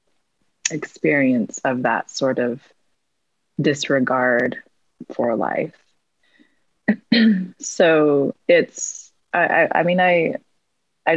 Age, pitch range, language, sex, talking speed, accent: 20-39, 130-185 Hz, English, female, 85 wpm, American